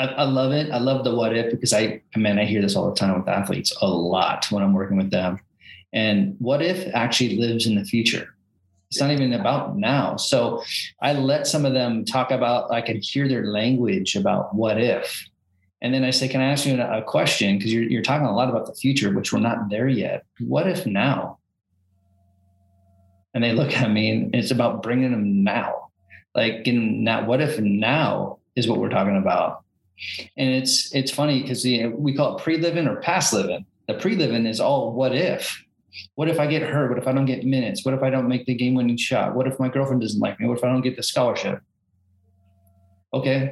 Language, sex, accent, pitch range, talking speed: English, male, American, 100-130 Hz, 220 wpm